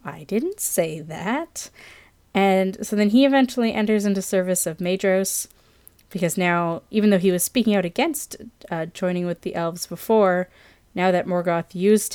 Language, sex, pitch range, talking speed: English, female, 175-215 Hz, 165 wpm